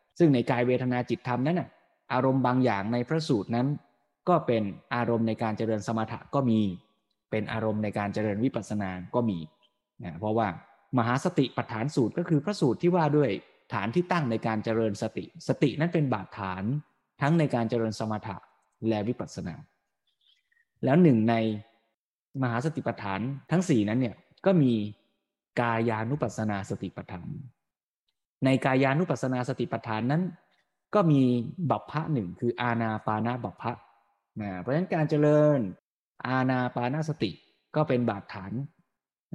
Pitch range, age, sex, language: 110-150 Hz, 20-39, male, Thai